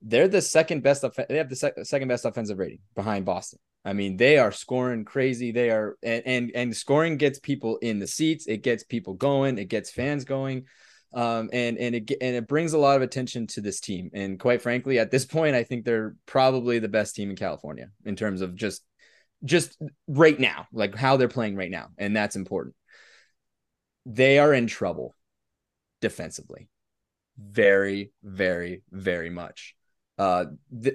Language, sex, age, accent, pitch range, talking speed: English, male, 20-39, American, 105-135 Hz, 180 wpm